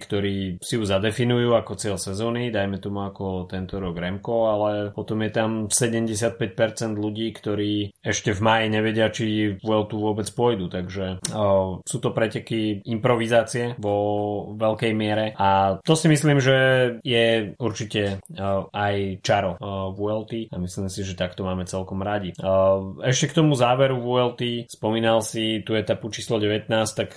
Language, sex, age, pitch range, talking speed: Slovak, male, 20-39, 95-110 Hz, 155 wpm